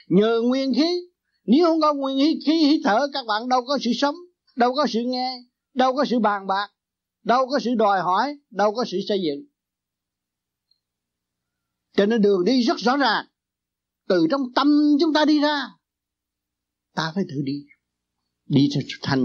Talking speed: 175 wpm